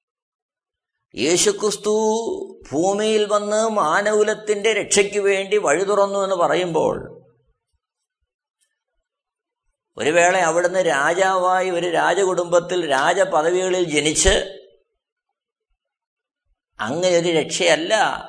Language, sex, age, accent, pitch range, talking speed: Malayalam, male, 50-69, native, 130-190 Hz, 65 wpm